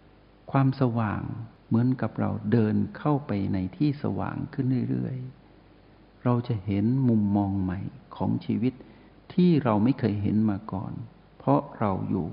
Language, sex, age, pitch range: Thai, male, 60-79, 100-115 Hz